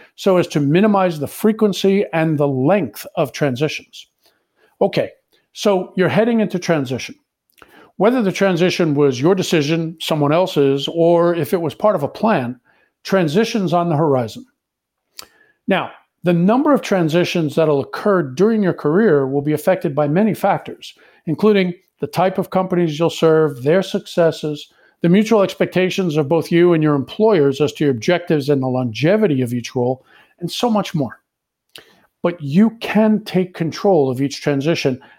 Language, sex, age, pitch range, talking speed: English, male, 50-69, 145-195 Hz, 160 wpm